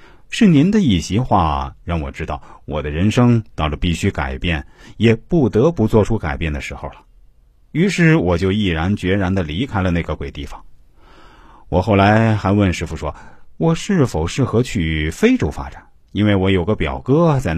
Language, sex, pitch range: Chinese, male, 80-115 Hz